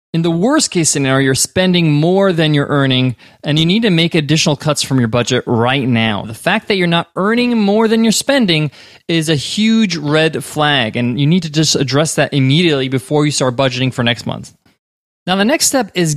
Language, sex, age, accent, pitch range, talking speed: English, male, 20-39, American, 135-185 Hz, 215 wpm